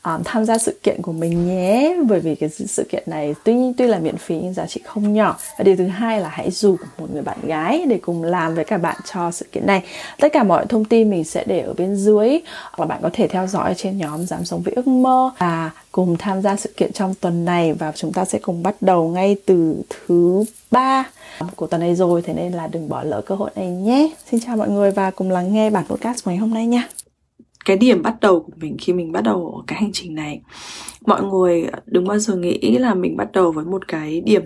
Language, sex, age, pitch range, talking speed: English, female, 20-39, 175-225 Hz, 255 wpm